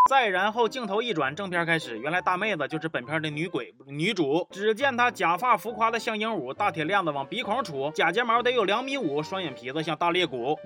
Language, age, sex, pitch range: Chinese, 20-39, male, 160-230 Hz